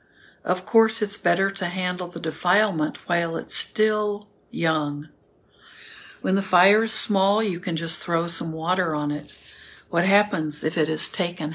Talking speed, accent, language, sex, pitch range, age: 160 wpm, American, English, female, 165-205 Hz, 60-79